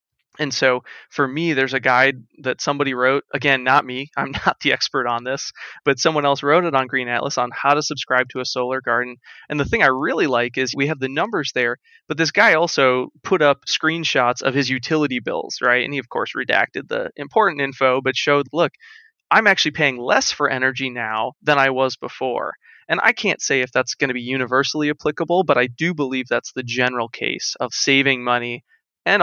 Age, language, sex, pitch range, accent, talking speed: 20-39, English, male, 130-150 Hz, American, 215 wpm